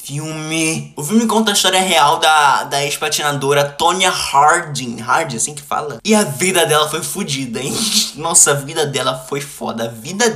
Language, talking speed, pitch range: Portuguese, 180 wpm, 145-190 Hz